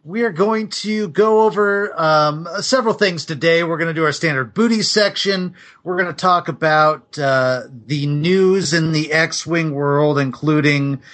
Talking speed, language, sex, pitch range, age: 165 wpm, English, male, 130-185 Hz, 40-59